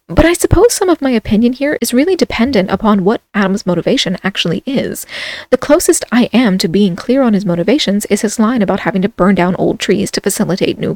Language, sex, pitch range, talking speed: English, female, 200-260 Hz, 220 wpm